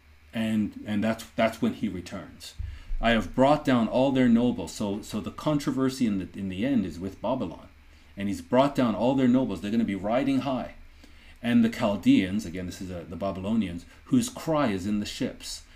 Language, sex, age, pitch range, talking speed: English, male, 40-59, 85-120 Hz, 205 wpm